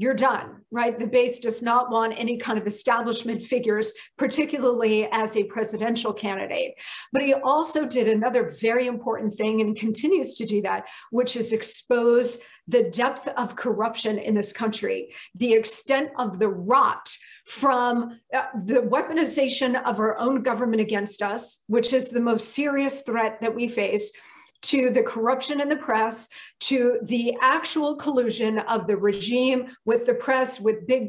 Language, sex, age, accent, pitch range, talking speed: English, female, 40-59, American, 225-270 Hz, 160 wpm